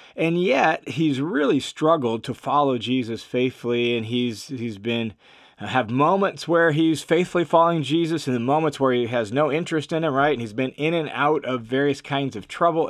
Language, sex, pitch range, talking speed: English, male, 130-165 Hz, 195 wpm